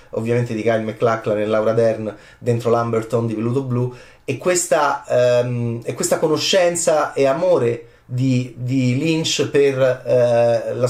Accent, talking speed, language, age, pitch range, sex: native, 145 wpm, Italian, 30-49, 120-150 Hz, male